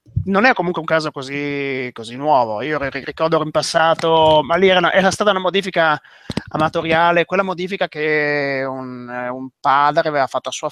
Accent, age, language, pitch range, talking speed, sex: native, 30-49, Italian, 130-165 Hz, 175 wpm, male